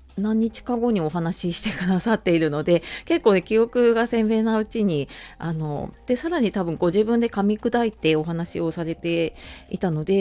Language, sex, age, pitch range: Japanese, female, 30-49, 165-230 Hz